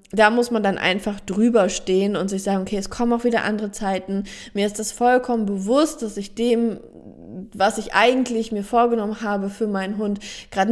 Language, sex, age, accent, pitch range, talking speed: German, female, 20-39, German, 195-225 Hz, 195 wpm